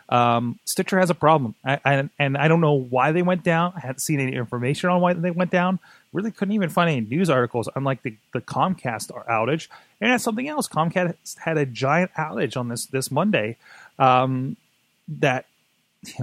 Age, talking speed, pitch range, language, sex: 30-49, 200 wpm, 125-155 Hz, English, male